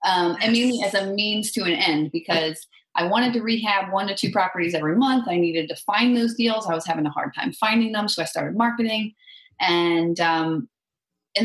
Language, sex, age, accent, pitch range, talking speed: English, female, 30-49, American, 170-225 Hz, 215 wpm